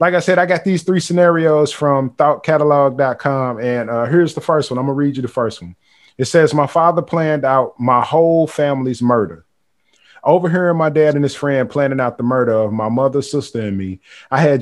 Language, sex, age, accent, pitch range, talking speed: English, male, 30-49, American, 120-155 Hz, 215 wpm